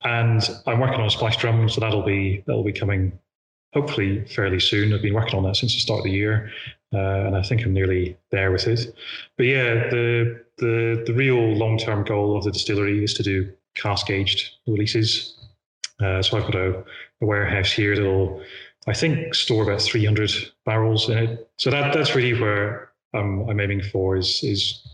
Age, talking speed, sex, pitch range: 30-49, 195 wpm, male, 100-120 Hz